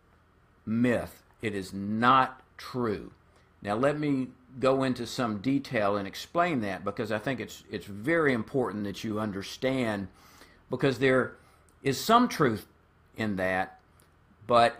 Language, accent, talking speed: English, American, 135 wpm